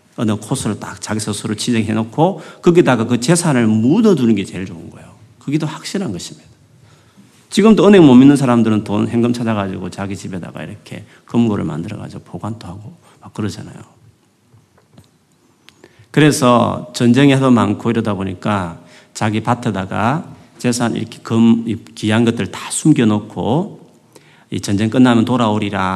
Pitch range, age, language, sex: 105-145 Hz, 40-59, Korean, male